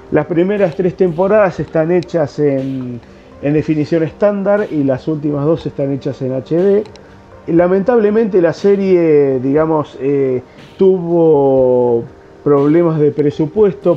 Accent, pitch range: Argentinian, 135-165 Hz